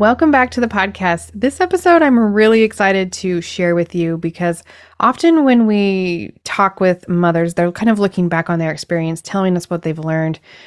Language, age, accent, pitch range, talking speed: English, 20-39, American, 165-205 Hz, 190 wpm